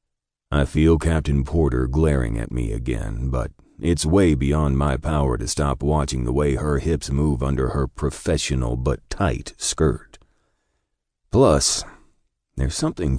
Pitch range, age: 65-80 Hz, 40-59